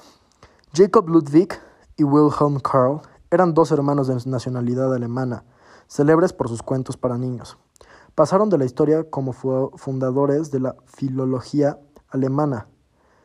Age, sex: 20-39, male